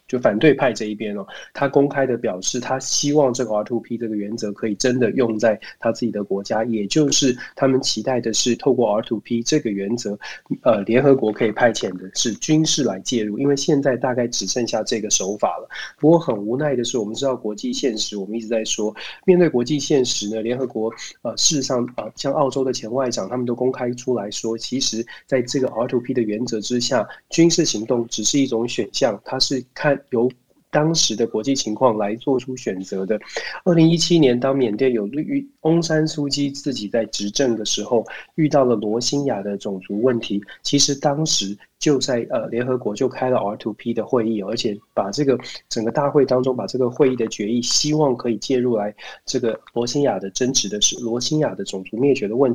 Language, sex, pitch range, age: Chinese, male, 110-140 Hz, 20-39